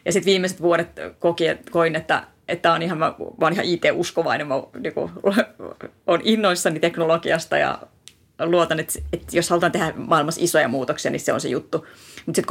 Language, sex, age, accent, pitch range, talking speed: Finnish, female, 30-49, native, 155-180 Hz, 175 wpm